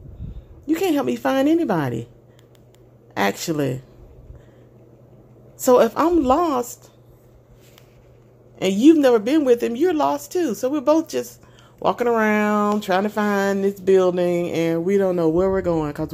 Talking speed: 145 wpm